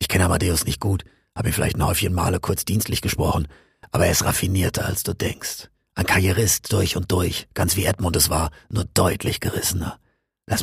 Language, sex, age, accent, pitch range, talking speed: German, male, 40-59, German, 80-100 Hz, 200 wpm